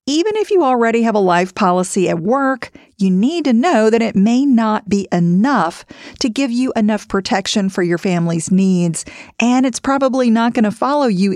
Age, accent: 50-69, American